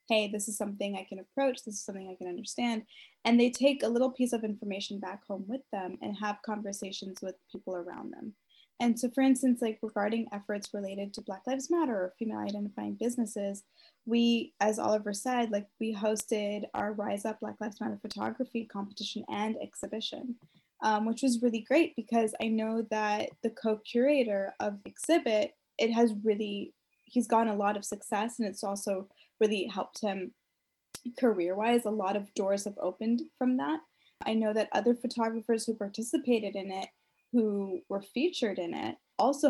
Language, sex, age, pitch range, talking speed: English, female, 10-29, 200-235 Hz, 180 wpm